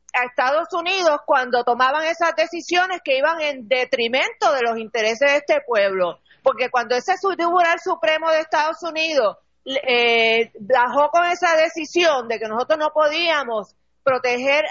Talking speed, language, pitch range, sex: 145 wpm, Spanish, 245-315 Hz, female